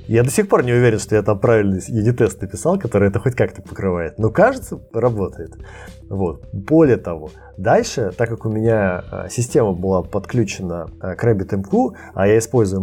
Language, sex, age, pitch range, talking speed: Russian, male, 20-39, 100-135 Hz, 170 wpm